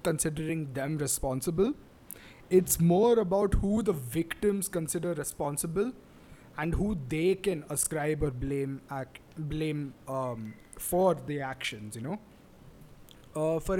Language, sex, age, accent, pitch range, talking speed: English, male, 20-39, Indian, 135-180 Hz, 120 wpm